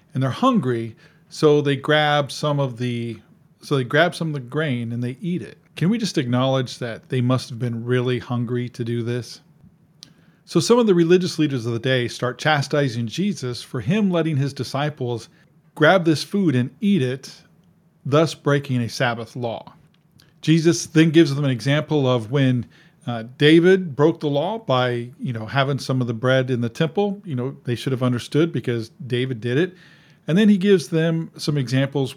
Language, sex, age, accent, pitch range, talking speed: English, male, 40-59, American, 125-165 Hz, 190 wpm